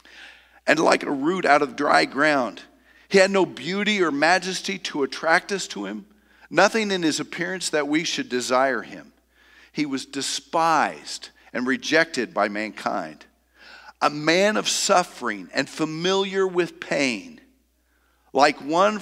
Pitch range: 130-200 Hz